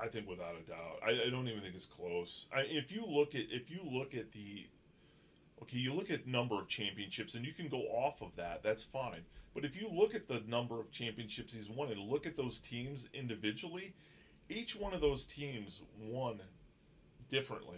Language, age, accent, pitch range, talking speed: English, 30-49, American, 110-150 Hz, 210 wpm